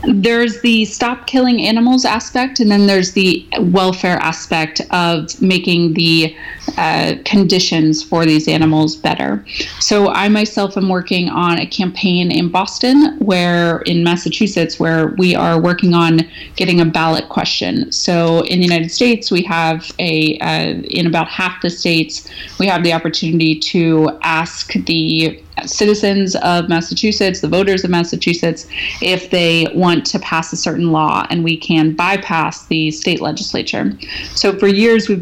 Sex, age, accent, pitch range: female, 30-49, American, 160-195 Hz